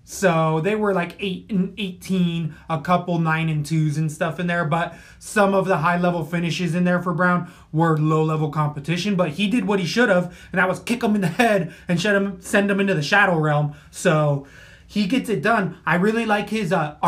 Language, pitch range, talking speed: English, 160-200 Hz, 230 wpm